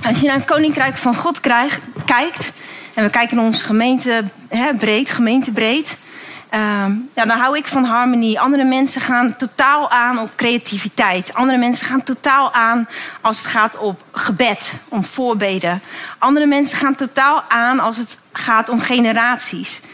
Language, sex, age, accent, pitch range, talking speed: Dutch, female, 30-49, Dutch, 220-270 Hz, 160 wpm